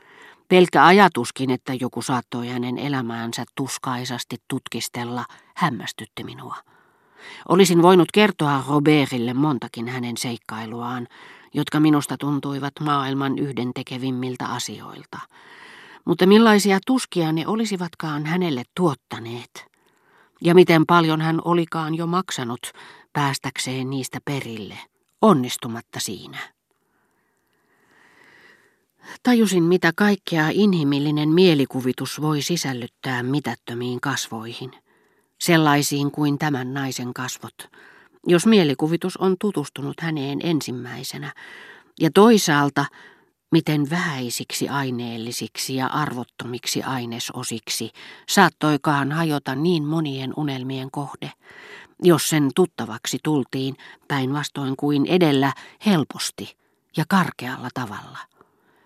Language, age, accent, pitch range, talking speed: Finnish, 40-59, native, 125-165 Hz, 90 wpm